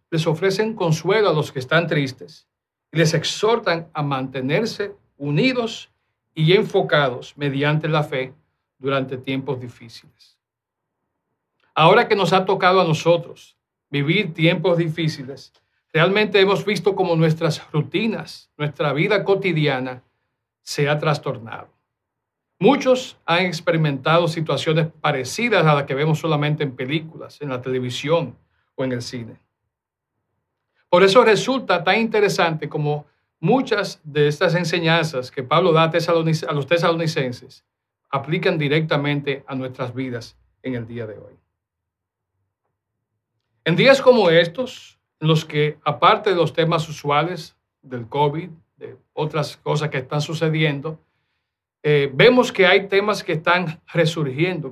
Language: Spanish